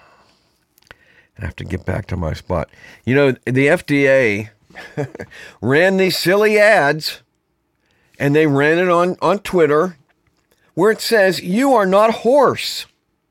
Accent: American